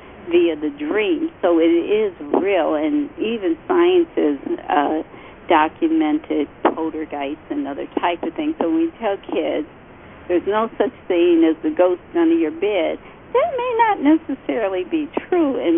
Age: 60-79